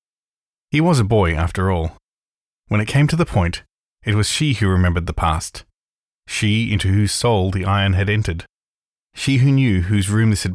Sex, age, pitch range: male, 20-39, 90-115 Hz